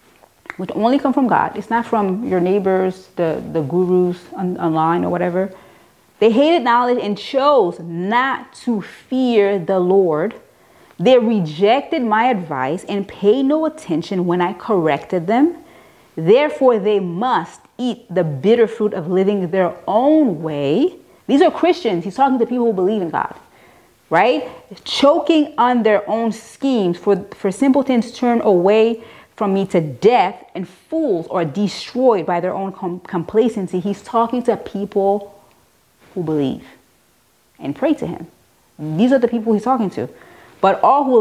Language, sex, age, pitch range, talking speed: English, female, 30-49, 185-245 Hz, 155 wpm